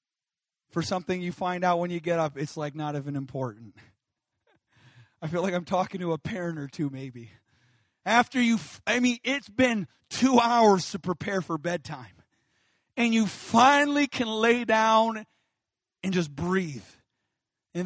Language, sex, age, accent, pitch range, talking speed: English, male, 30-49, American, 170-235 Hz, 160 wpm